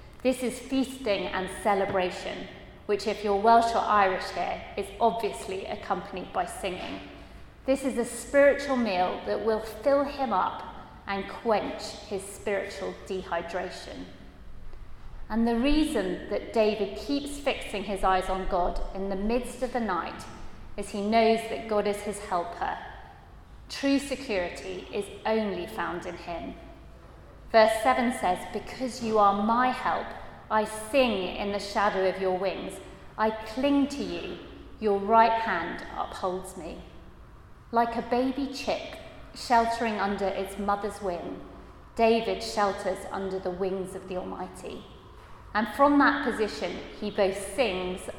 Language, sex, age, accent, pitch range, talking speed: English, female, 30-49, British, 185-235 Hz, 140 wpm